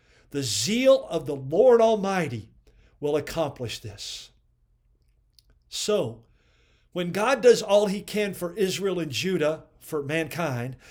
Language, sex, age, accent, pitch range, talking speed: English, male, 50-69, American, 140-205 Hz, 120 wpm